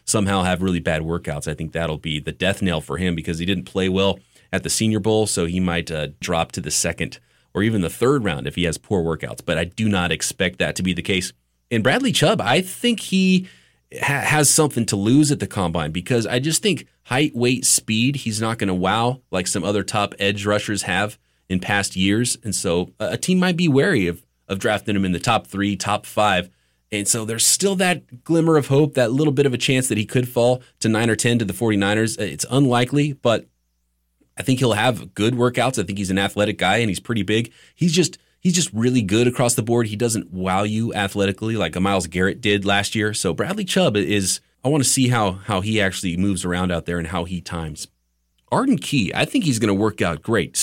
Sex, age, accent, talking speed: male, 30-49, American, 235 wpm